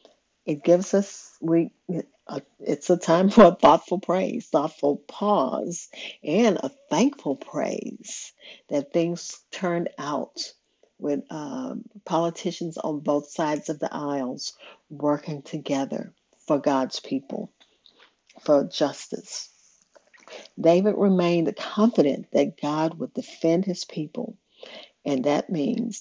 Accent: American